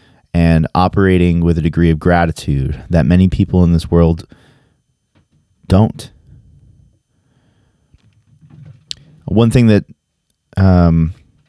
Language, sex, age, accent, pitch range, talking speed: English, male, 30-49, American, 85-110 Hz, 95 wpm